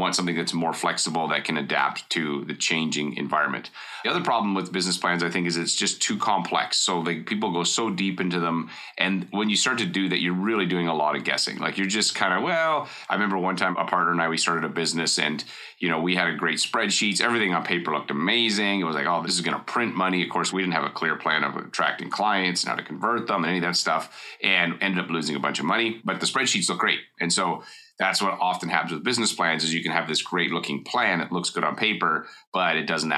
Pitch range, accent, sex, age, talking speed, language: 80-95 Hz, American, male, 30-49, 265 wpm, English